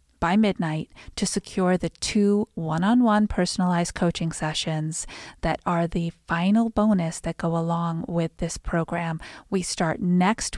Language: English